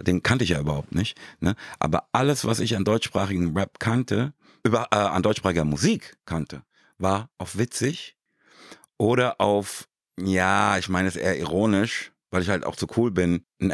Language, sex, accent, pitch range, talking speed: German, male, German, 80-105 Hz, 175 wpm